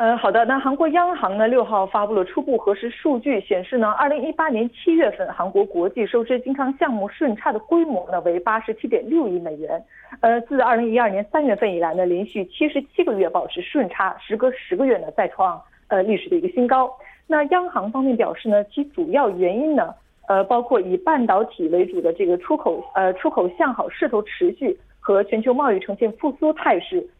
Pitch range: 200-305 Hz